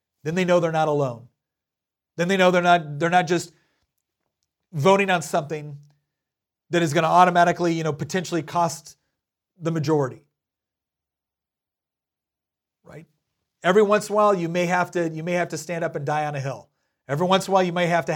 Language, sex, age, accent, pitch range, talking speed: English, male, 40-59, American, 145-180 Hz, 190 wpm